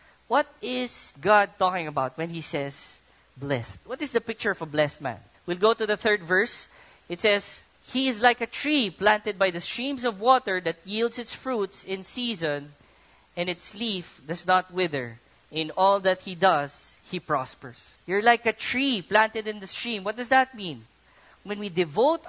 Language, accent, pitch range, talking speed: English, Filipino, 185-250 Hz, 190 wpm